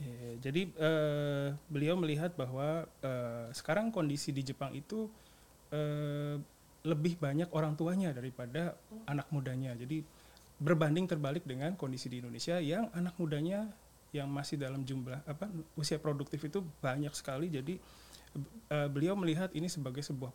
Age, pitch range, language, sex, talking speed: 30-49, 140-170 Hz, Indonesian, male, 135 wpm